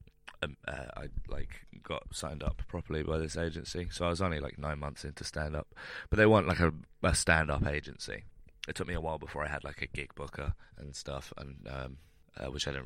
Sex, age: male, 20-39